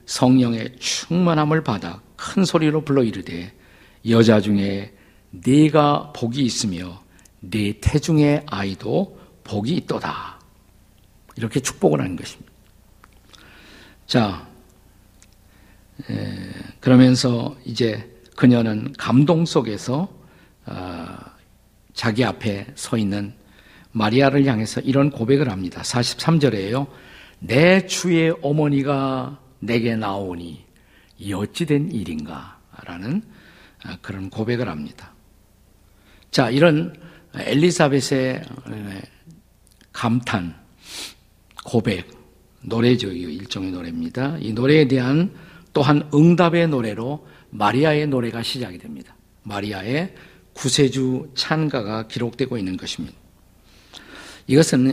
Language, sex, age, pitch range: Korean, male, 50-69, 100-140 Hz